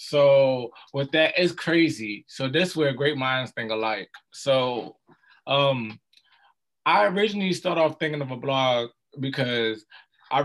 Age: 20-39